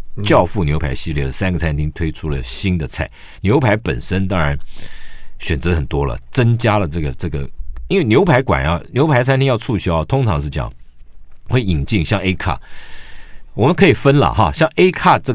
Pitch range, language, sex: 75-115 Hz, Chinese, male